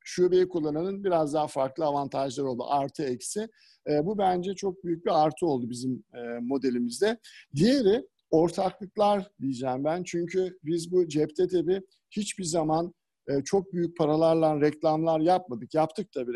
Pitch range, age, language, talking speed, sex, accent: 135-180 Hz, 50-69, Turkish, 150 wpm, male, native